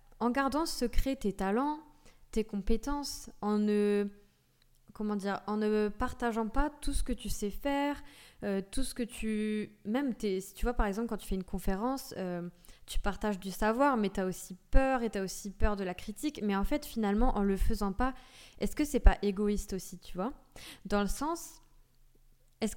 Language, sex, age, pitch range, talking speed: French, female, 20-39, 200-250 Hz, 205 wpm